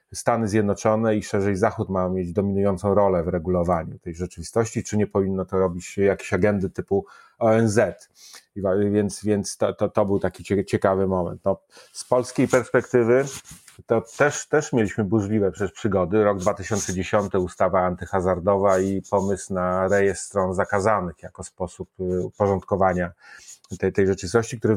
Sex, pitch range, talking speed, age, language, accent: male, 95-110 Hz, 135 wpm, 30-49, Polish, native